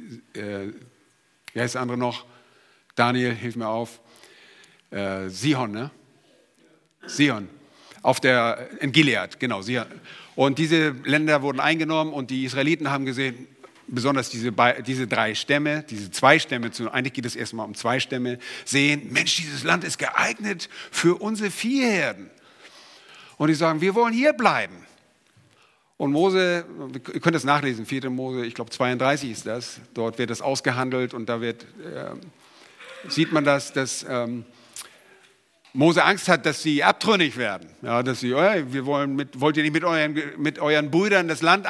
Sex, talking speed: male, 155 wpm